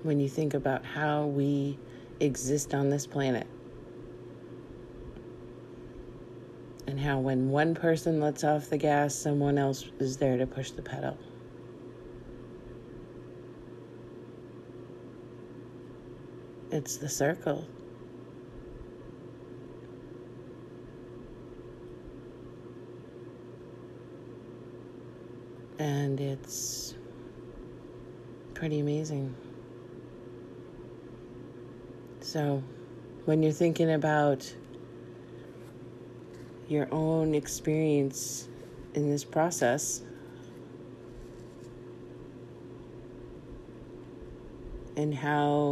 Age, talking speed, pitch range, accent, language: 50-69, 60 wpm, 120-150 Hz, American, English